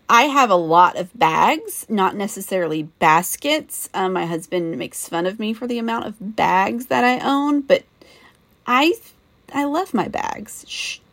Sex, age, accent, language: female, 30-49, American, English